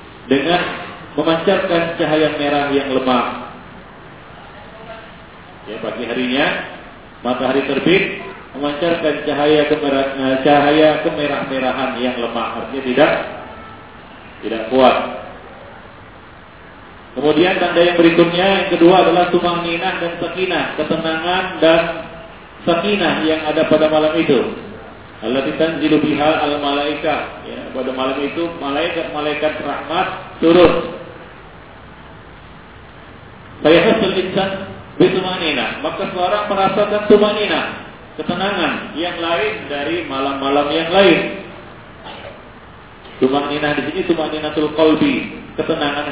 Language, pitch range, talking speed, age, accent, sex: English, 145-175 Hz, 95 wpm, 40-59, Indonesian, male